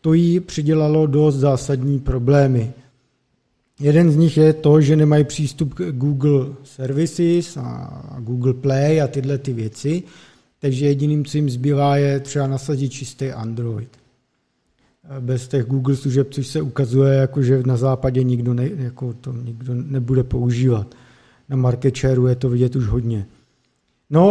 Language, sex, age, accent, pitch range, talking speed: Czech, male, 50-69, native, 130-155 Hz, 150 wpm